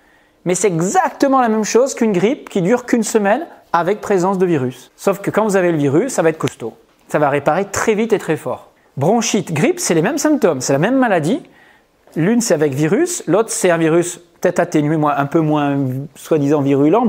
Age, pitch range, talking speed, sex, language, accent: 30-49, 150-200 Hz, 210 wpm, male, English, French